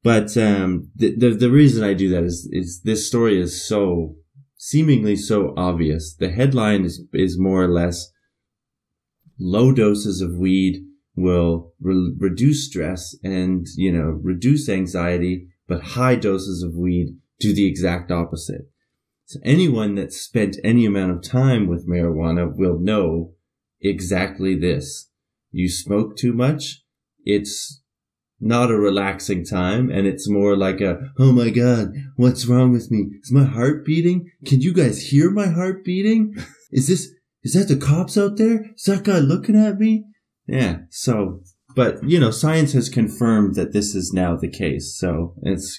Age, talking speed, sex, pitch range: 20-39, 160 wpm, male, 90-130 Hz